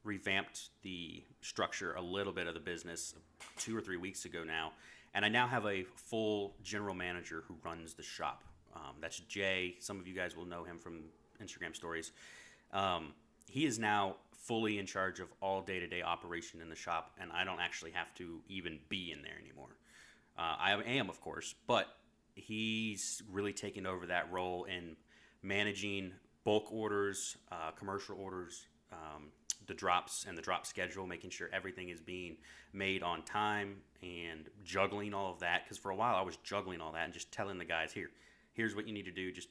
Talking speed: 190 wpm